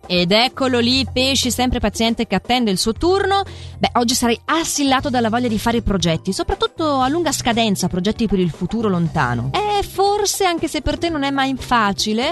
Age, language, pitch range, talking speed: 30-49, Italian, 175-270 Hz, 185 wpm